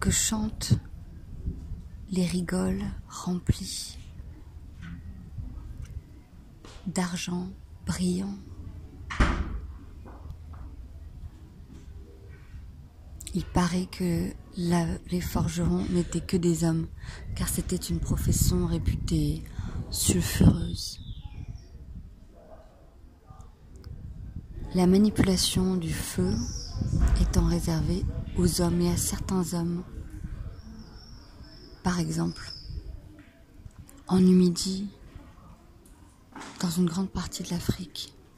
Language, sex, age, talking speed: French, female, 30-49, 70 wpm